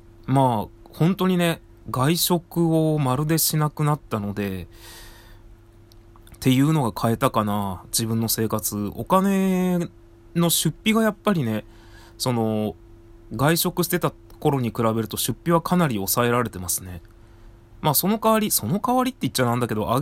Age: 20-39